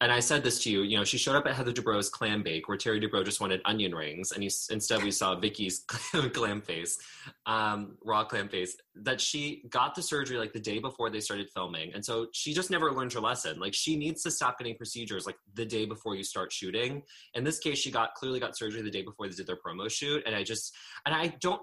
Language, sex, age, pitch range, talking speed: English, male, 20-39, 105-150 Hz, 250 wpm